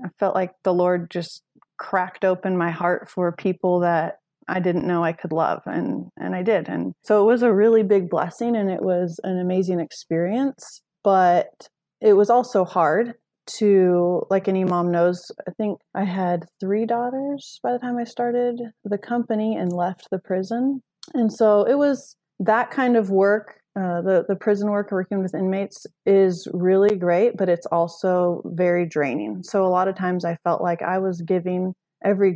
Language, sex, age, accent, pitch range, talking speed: English, female, 20-39, American, 175-205 Hz, 185 wpm